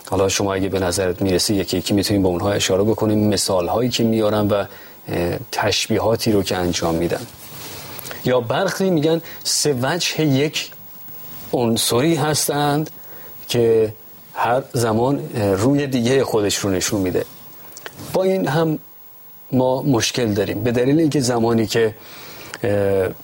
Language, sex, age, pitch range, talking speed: Persian, male, 40-59, 105-135 Hz, 130 wpm